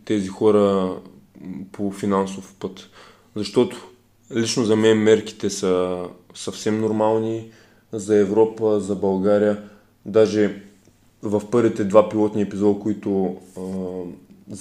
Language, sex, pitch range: Bulgarian, male, 100-110 Hz